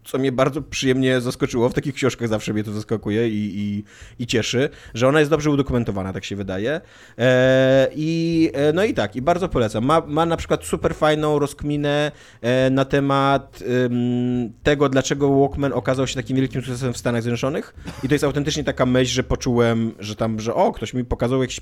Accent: native